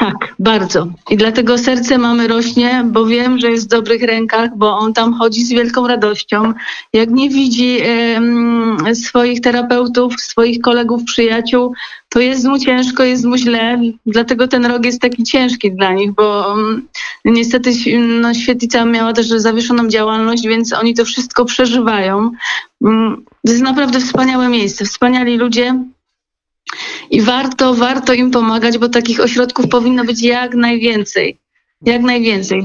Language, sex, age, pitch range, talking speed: Polish, female, 30-49, 225-250 Hz, 140 wpm